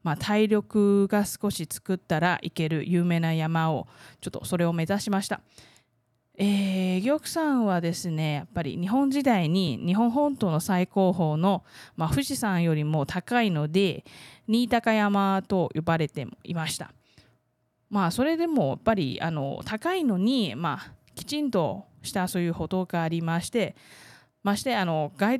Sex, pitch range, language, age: female, 160-210 Hz, Japanese, 20-39